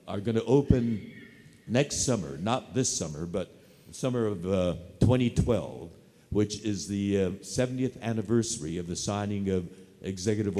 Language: English